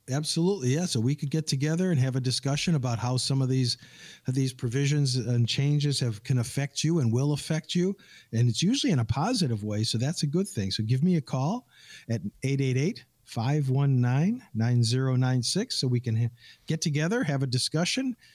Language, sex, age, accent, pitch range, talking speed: English, male, 50-69, American, 125-155 Hz, 185 wpm